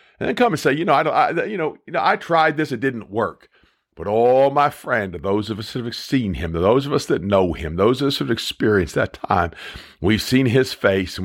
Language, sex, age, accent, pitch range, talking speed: English, male, 50-69, American, 95-130 Hz, 275 wpm